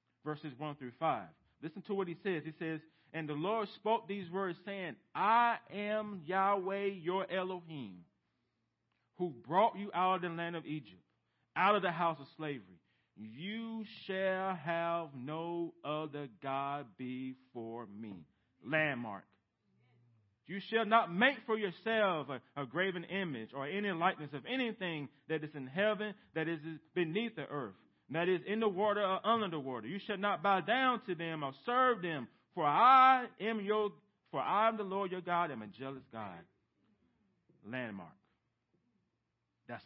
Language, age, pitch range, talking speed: English, 40-59, 135-200 Hz, 155 wpm